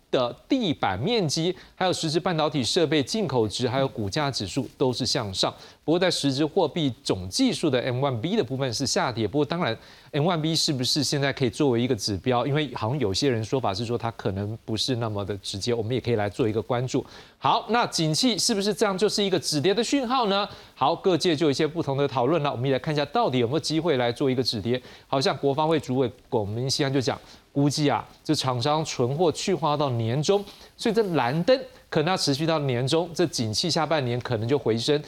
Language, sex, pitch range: Chinese, male, 125-175 Hz